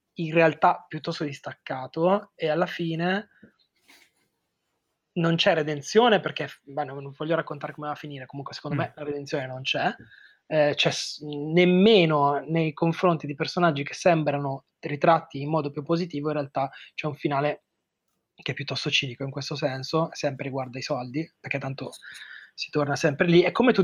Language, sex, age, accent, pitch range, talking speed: Italian, male, 20-39, native, 140-175 Hz, 160 wpm